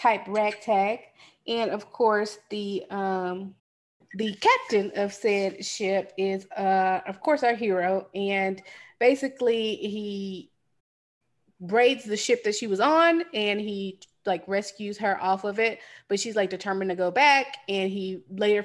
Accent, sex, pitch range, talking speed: American, female, 190-230 Hz, 150 wpm